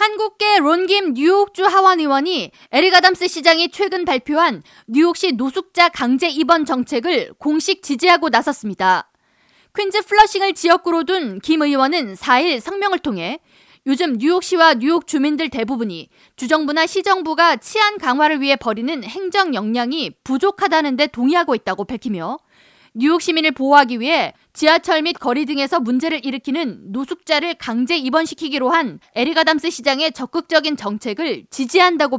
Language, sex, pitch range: Korean, female, 265-340 Hz